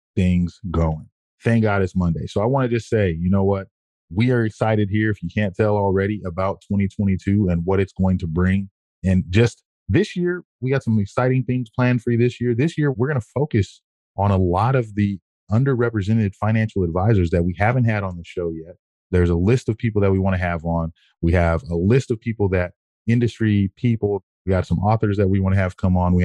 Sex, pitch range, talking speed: male, 90-105 Hz, 230 wpm